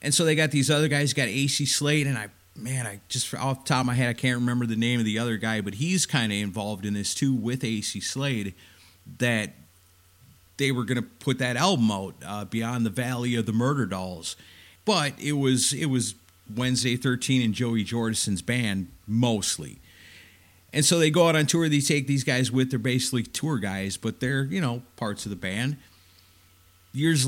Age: 50-69